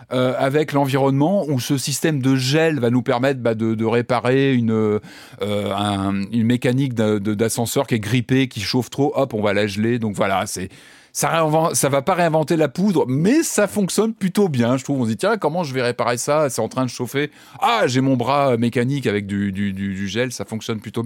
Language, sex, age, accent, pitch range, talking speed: French, male, 30-49, French, 110-140 Hz, 230 wpm